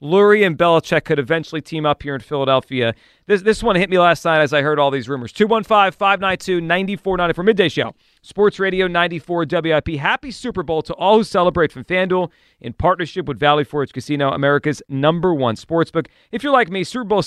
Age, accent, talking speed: 40-59, American, 190 wpm